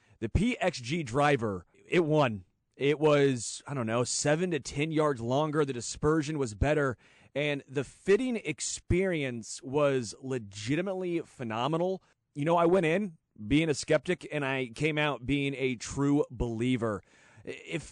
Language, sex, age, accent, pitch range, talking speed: English, male, 30-49, American, 130-155 Hz, 145 wpm